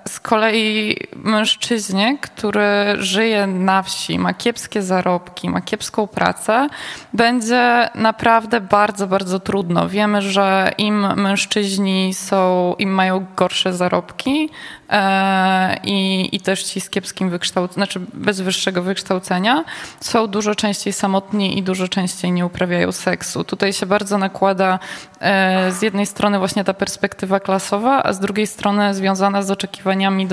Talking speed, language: 135 wpm, Polish